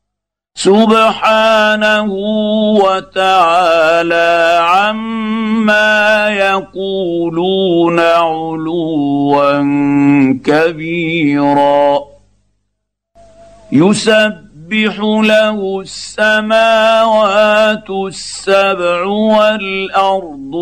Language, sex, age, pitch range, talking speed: Arabic, male, 50-69, 160-210 Hz, 30 wpm